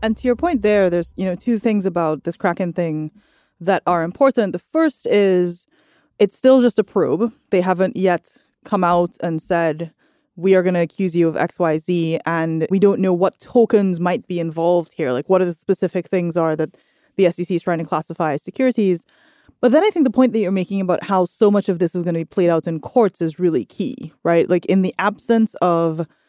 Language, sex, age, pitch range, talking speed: English, female, 20-39, 175-210 Hz, 230 wpm